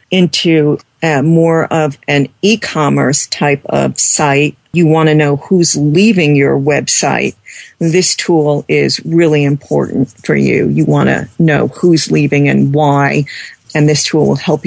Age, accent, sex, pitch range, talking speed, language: 50-69, American, female, 140-160 Hz, 145 wpm, English